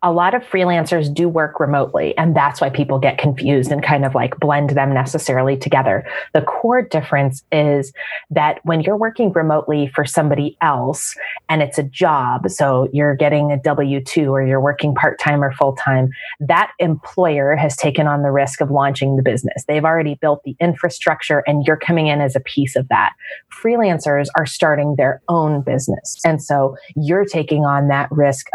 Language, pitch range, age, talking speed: English, 140-155 Hz, 30-49, 180 wpm